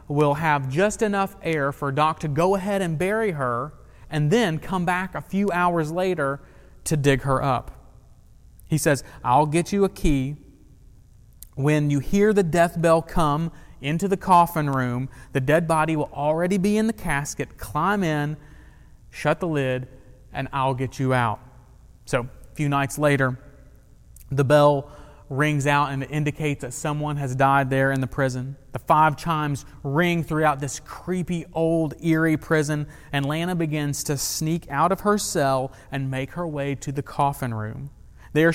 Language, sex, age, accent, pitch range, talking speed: English, male, 30-49, American, 135-165 Hz, 170 wpm